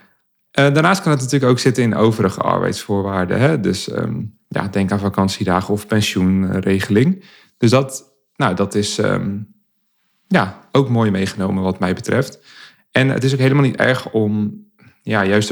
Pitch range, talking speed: 100-120 Hz, 130 wpm